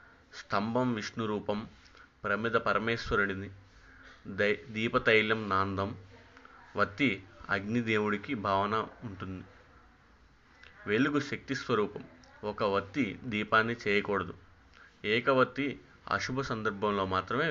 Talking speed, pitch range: 75 wpm, 100-115 Hz